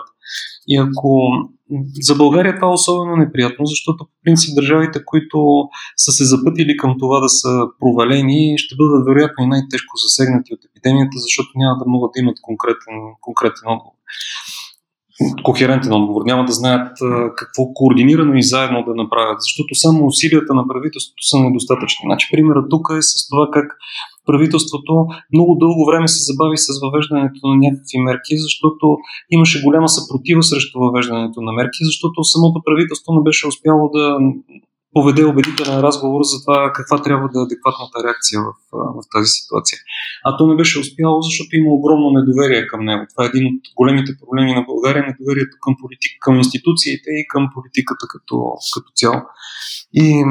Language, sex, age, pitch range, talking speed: Bulgarian, male, 30-49, 130-155 Hz, 160 wpm